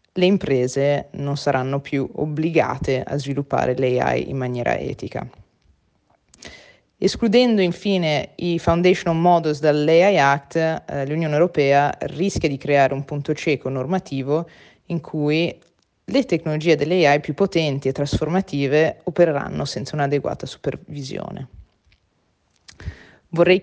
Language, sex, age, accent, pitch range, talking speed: Italian, female, 20-39, native, 145-185 Hz, 110 wpm